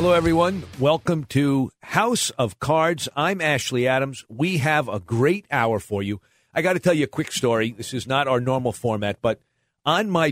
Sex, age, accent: male, 50-69, American